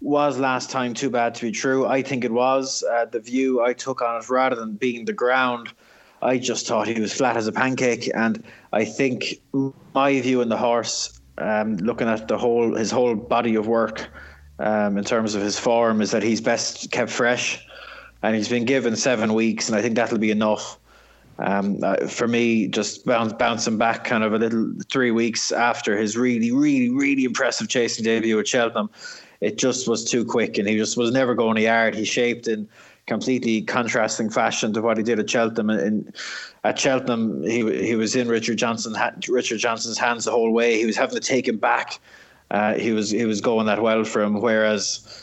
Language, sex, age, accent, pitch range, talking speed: English, male, 20-39, Irish, 110-125 Hz, 210 wpm